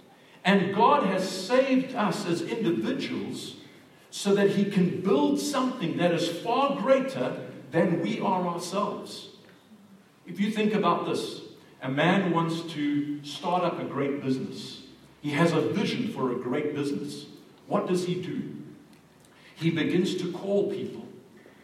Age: 50-69